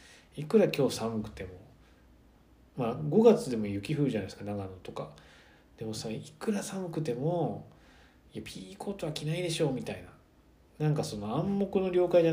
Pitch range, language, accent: 100-155 Hz, Japanese, native